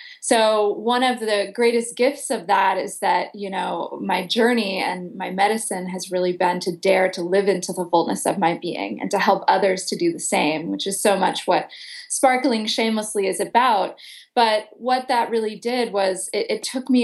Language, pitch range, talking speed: English, 185-230 Hz, 200 wpm